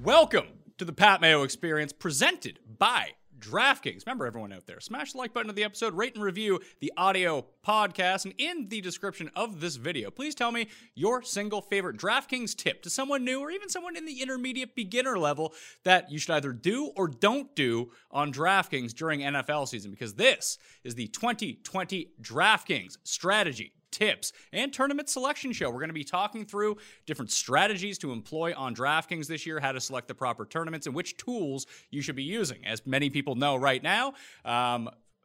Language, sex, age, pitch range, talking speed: English, male, 30-49, 145-215 Hz, 190 wpm